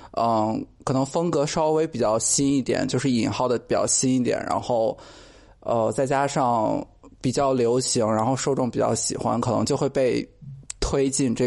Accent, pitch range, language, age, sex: native, 120-165 Hz, Chinese, 20-39, male